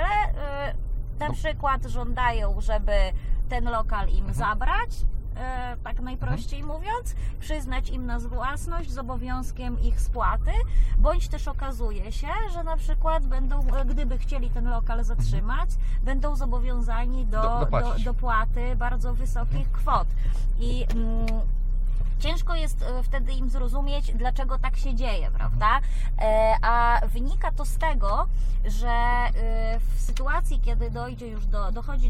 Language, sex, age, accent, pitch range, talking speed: Polish, female, 20-39, native, 110-125 Hz, 115 wpm